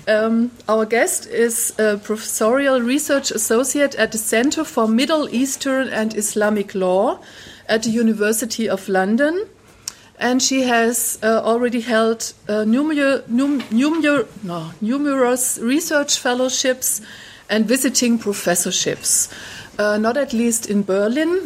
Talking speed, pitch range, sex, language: 115 wpm, 210-260 Hz, female, German